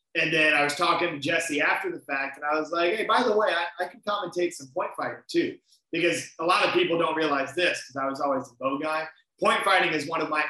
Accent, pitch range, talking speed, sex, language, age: American, 145-170 Hz, 270 wpm, male, English, 30-49